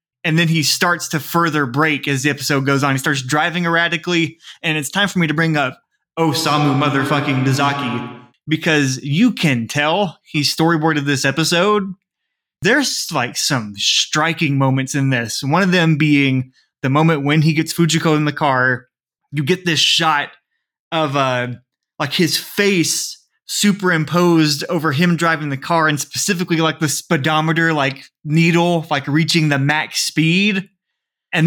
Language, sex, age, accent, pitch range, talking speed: English, male, 20-39, American, 145-180 Hz, 160 wpm